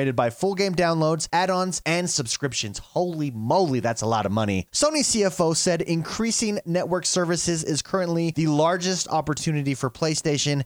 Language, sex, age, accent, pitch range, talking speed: English, male, 30-49, American, 130-180 Hz, 150 wpm